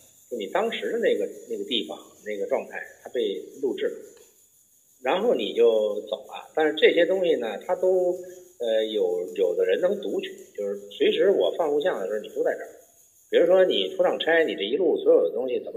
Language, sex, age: Chinese, male, 50-69